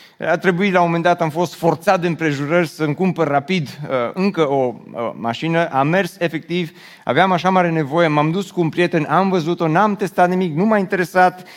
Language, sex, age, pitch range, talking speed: Romanian, male, 30-49, 135-180 Hz, 200 wpm